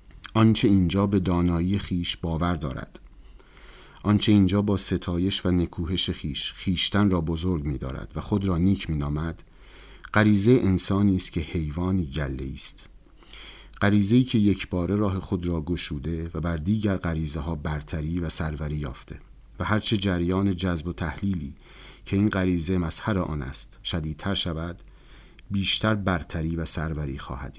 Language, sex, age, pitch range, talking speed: Persian, male, 50-69, 80-95 Hz, 145 wpm